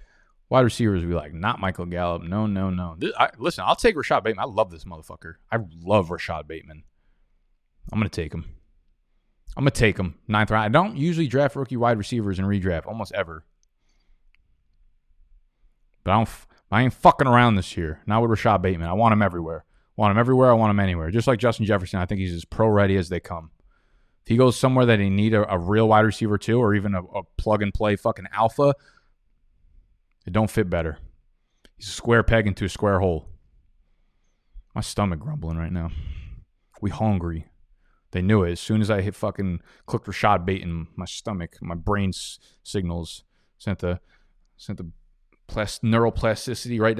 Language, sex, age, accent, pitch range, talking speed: English, male, 20-39, American, 85-110 Hz, 190 wpm